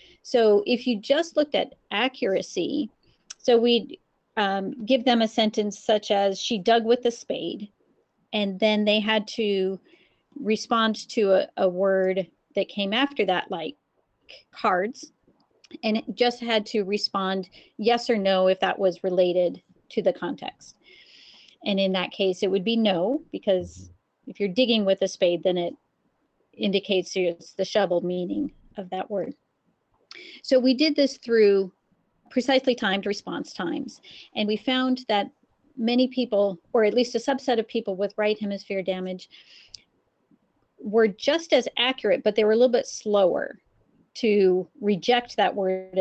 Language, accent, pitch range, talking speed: English, American, 195-245 Hz, 155 wpm